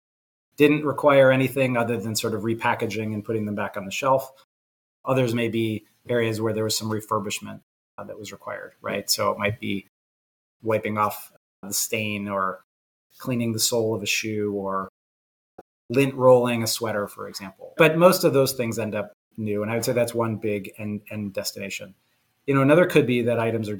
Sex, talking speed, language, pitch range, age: male, 195 wpm, English, 105-125 Hz, 30-49